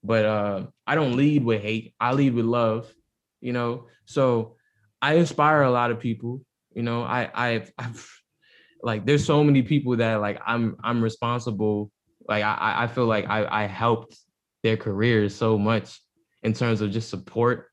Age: 20-39